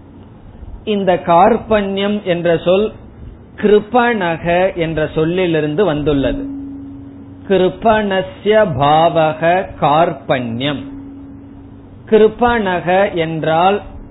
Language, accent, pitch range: Tamil, native, 145-195 Hz